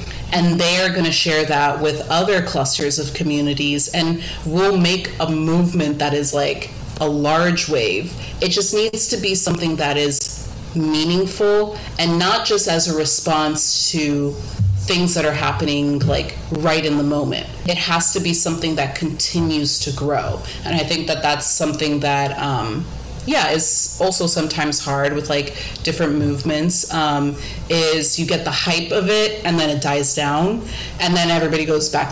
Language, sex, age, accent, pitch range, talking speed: English, female, 30-49, American, 145-170 Hz, 170 wpm